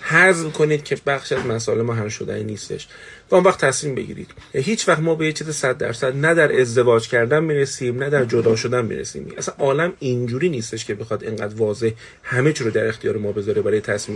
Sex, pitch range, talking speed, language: male, 120-155 Hz, 210 wpm, Persian